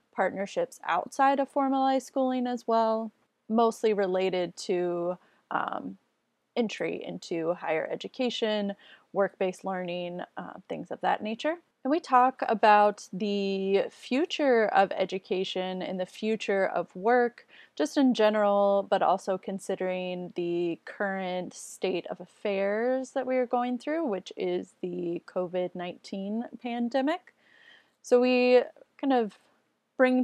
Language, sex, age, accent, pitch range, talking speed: English, female, 20-39, American, 180-240 Hz, 120 wpm